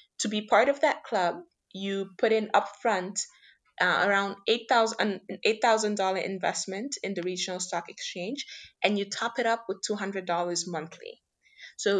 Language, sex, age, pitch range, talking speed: English, female, 20-39, 175-235 Hz, 140 wpm